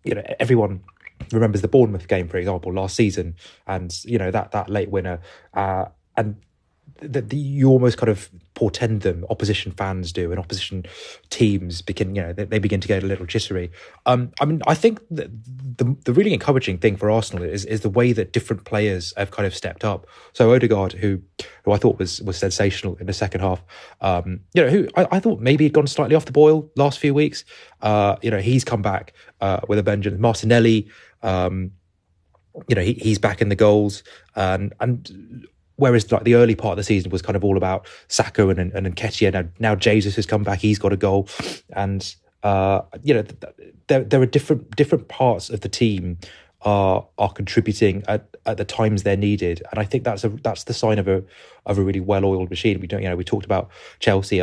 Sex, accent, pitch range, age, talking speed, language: male, British, 95-120 Hz, 20-39, 215 wpm, English